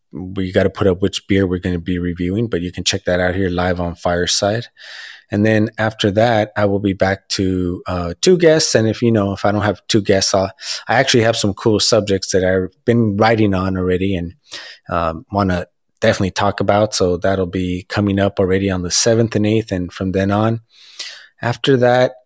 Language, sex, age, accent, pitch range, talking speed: English, male, 20-39, American, 95-110 Hz, 220 wpm